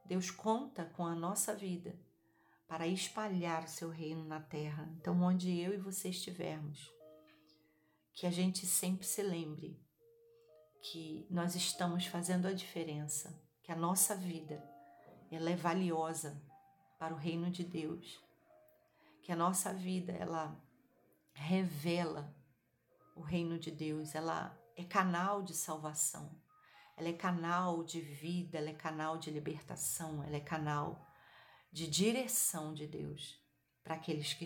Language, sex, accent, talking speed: Portuguese, female, Brazilian, 135 wpm